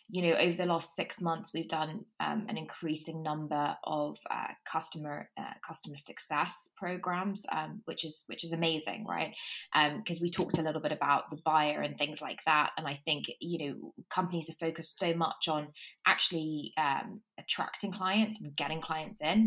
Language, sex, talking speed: English, female, 185 wpm